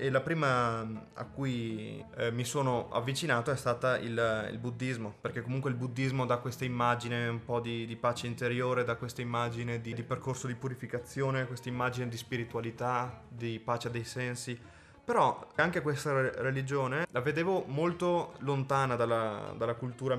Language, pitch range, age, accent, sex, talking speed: Italian, 120-140 Hz, 20-39, native, male, 165 wpm